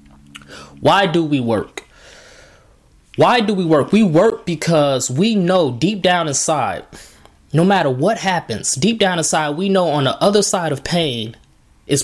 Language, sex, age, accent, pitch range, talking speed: English, male, 20-39, American, 135-180 Hz, 160 wpm